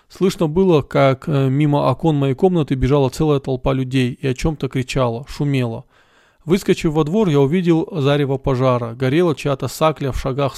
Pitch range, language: 135-170 Hz, Russian